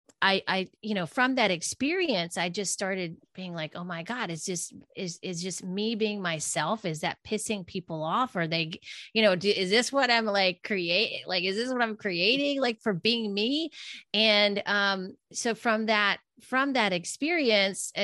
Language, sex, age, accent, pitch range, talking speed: English, female, 30-49, American, 170-220 Hz, 185 wpm